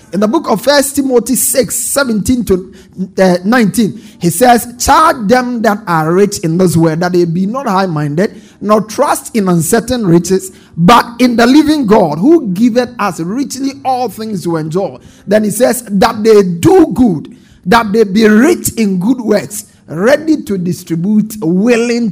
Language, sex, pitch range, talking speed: English, male, 185-250 Hz, 170 wpm